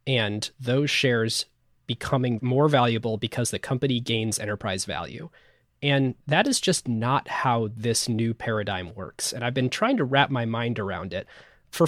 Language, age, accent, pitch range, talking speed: English, 20-39, American, 110-135 Hz, 165 wpm